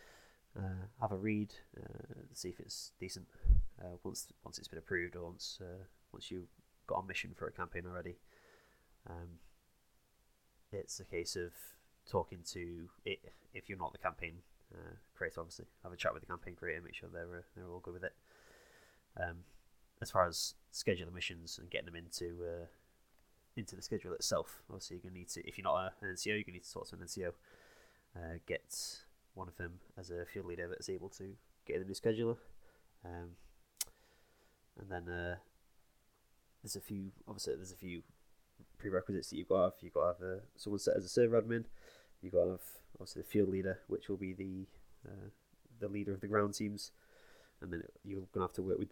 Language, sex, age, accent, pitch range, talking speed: English, male, 20-39, British, 85-100 Hz, 205 wpm